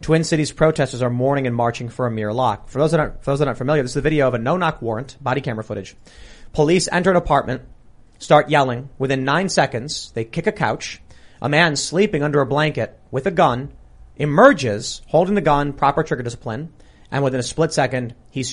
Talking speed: 215 wpm